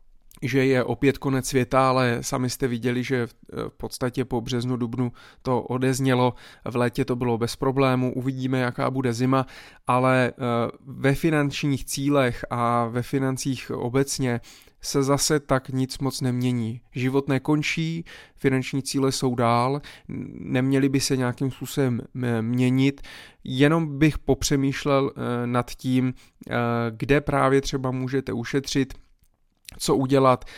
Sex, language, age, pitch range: male, Czech, 20-39, 120-135 Hz